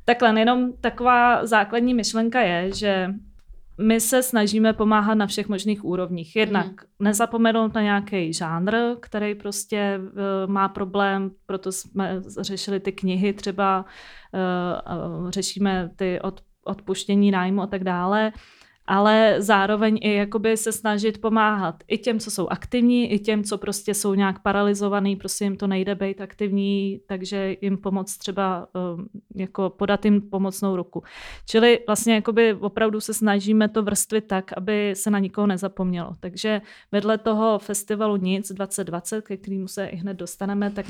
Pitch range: 195-215 Hz